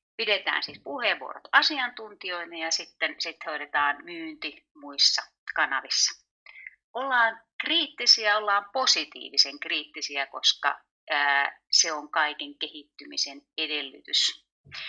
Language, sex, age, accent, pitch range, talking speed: English, female, 30-49, Finnish, 140-220 Hz, 85 wpm